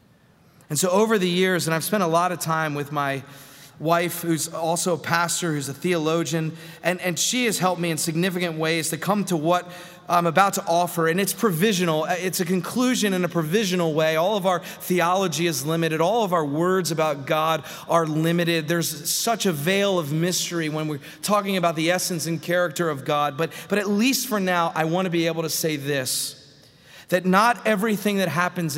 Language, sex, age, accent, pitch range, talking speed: English, male, 30-49, American, 155-185 Hz, 205 wpm